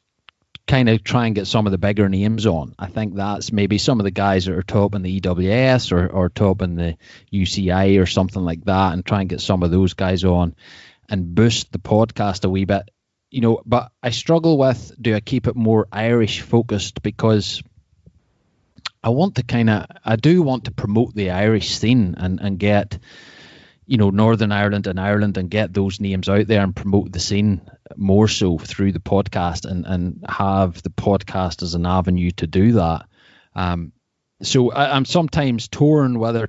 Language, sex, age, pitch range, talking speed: English, male, 30-49, 95-115 Hz, 195 wpm